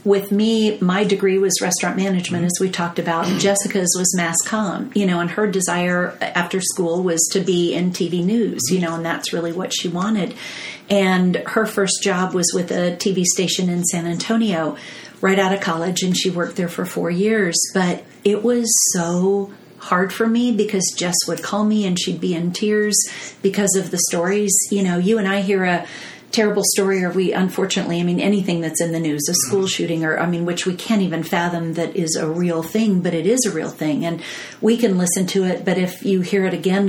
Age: 40-59